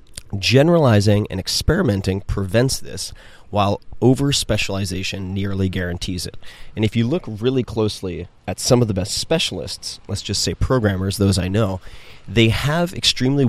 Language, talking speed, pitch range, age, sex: English, 140 wpm, 95-115 Hz, 30-49, male